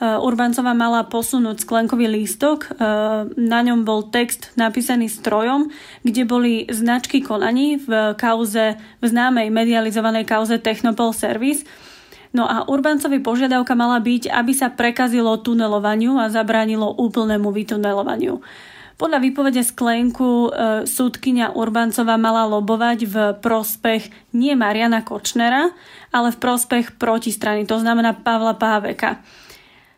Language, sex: Slovak, female